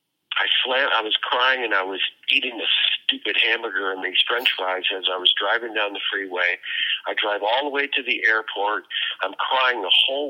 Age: 50-69